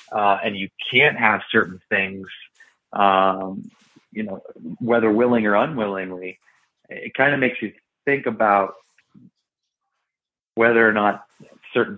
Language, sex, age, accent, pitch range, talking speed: English, male, 30-49, American, 95-115 Hz, 125 wpm